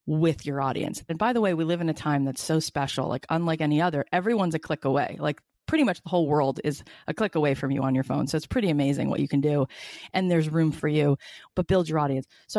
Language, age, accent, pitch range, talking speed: English, 30-49, American, 150-210 Hz, 265 wpm